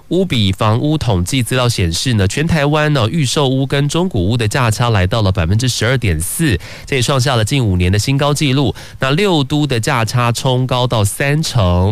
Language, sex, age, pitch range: Chinese, male, 30-49, 105-140 Hz